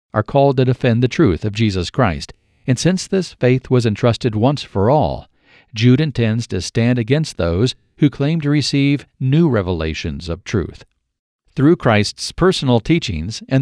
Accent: American